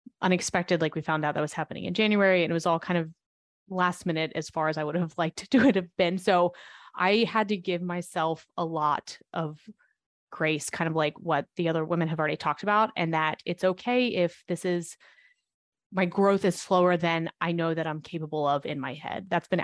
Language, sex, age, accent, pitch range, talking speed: English, female, 20-39, American, 165-195 Hz, 225 wpm